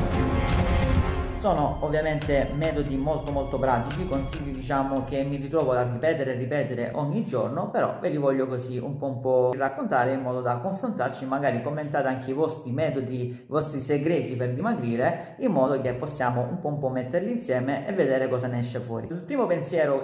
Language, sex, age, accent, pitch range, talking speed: Italian, male, 40-59, native, 125-155 Hz, 185 wpm